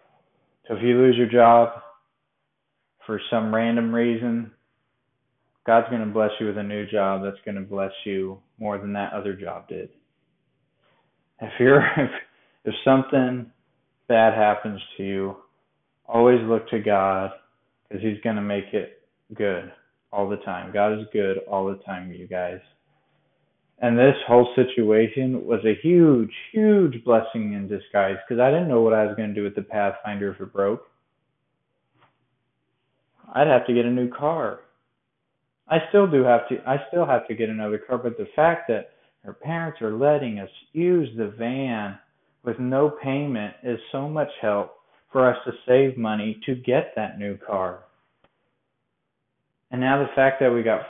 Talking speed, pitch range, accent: 165 wpm, 105-130 Hz, American